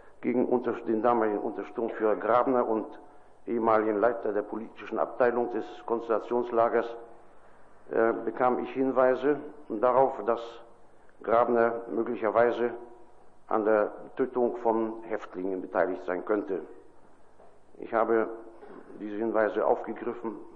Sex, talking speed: male, 95 wpm